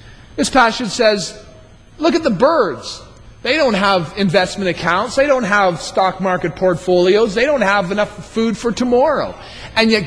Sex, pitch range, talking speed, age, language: male, 165-225 Hz, 160 wpm, 40-59, English